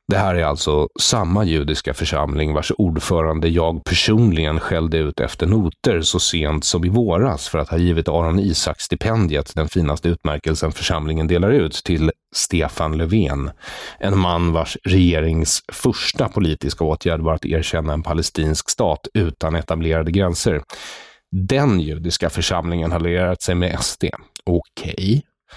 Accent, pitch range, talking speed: Swedish, 80-95 Hz, 145 wpm